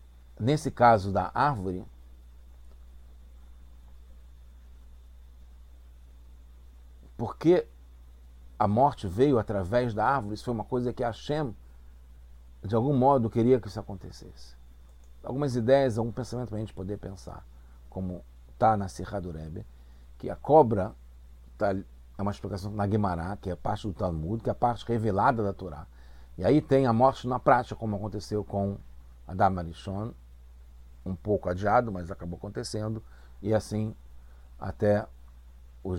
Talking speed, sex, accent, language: 140 wpm, male, Brazilian, English